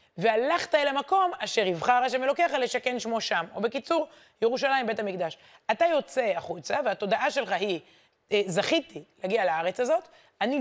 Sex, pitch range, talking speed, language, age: female, 195-260 Hz, 155 wpm, Hebrew, 30-49